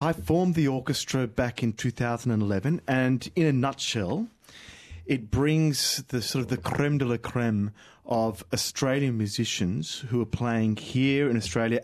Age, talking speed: 30-49, 150 wpm